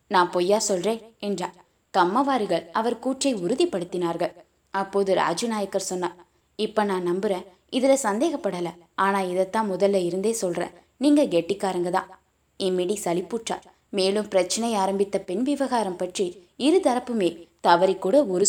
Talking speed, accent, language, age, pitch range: 90 wpm, native, Tamil, 20-39, 180-220 Hz